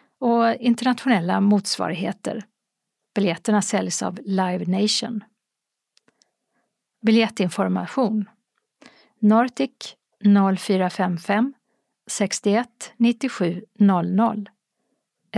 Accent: native